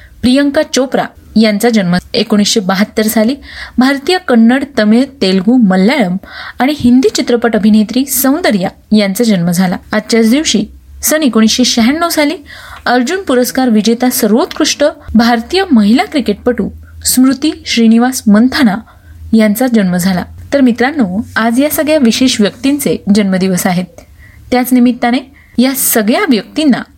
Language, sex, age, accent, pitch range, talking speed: Marathi, female, 30-49, native, 215-265 Hz, 110 wpm